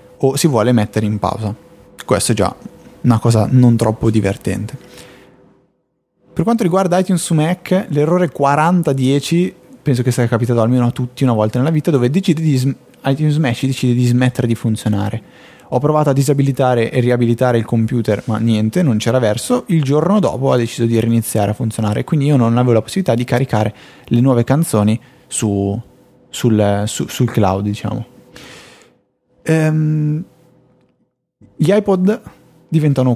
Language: Italian